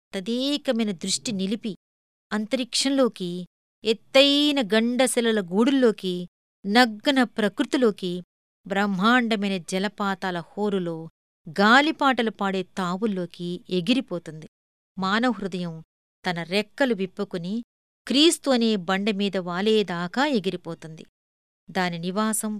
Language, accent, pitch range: Telugu, native, 190-245 Hz